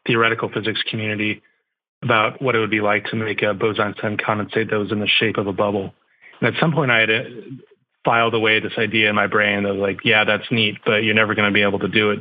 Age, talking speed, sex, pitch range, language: 30-49, 245 wpm, male, 105-115 Hz, English